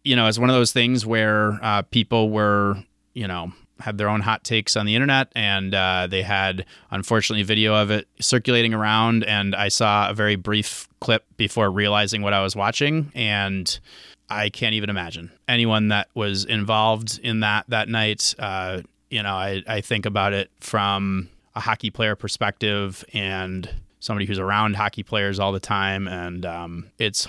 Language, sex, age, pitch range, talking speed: English, male, 30-49, 95-115 Hz, 180 wpm